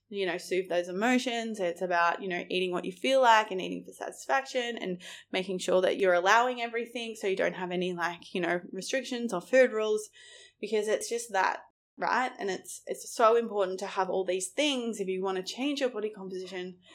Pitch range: 190-255 Hz